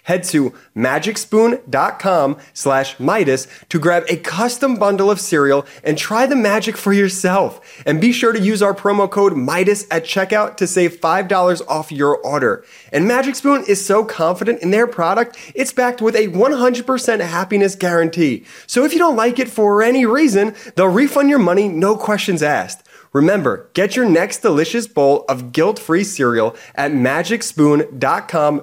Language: English